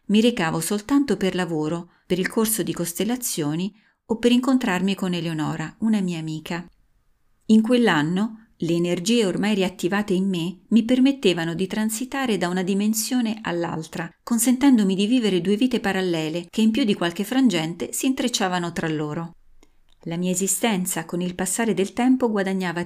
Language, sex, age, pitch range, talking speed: Italian, female, 30-49, 170-220 Hz, 155 wpm